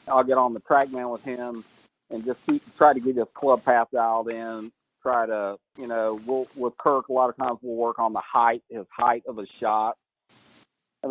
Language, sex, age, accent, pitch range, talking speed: English, male, 40-59, American, 115-135 Hz, 210 wpm